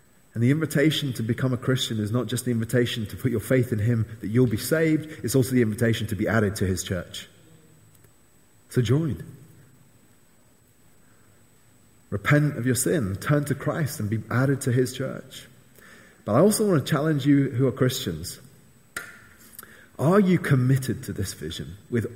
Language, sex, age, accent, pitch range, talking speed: English, male, 30-49, British, 100-135 Hz, 175 wpm